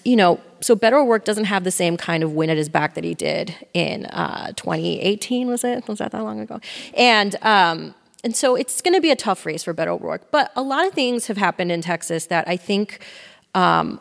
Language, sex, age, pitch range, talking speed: English, female, 30-49, 170-215 Hz, 235 wpm